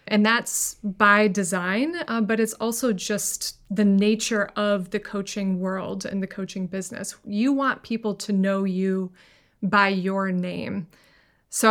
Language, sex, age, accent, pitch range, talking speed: English, female, 30-49, American, 195-230 Hz, 150 wpm